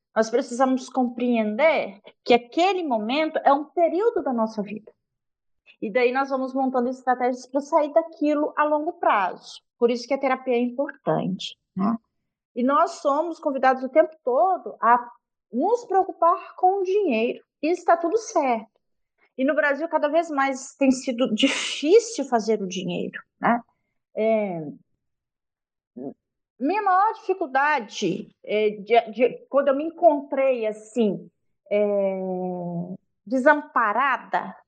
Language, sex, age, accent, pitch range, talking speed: Portuguese, female, 40-59, Brazilian, 235-315 Hz, 130 wpm